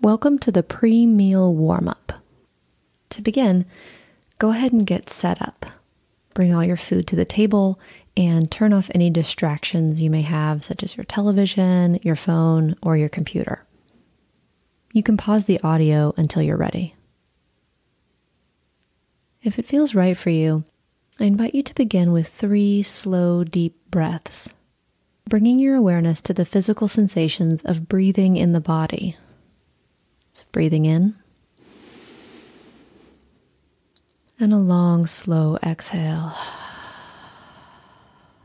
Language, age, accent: English, 30-49, American